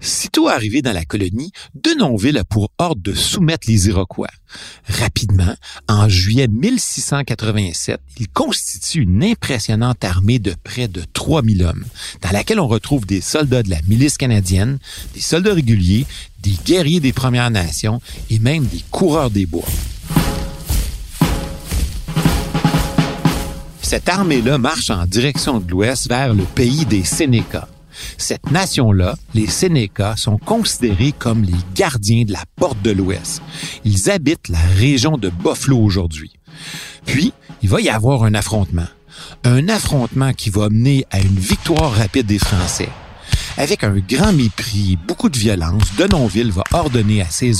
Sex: male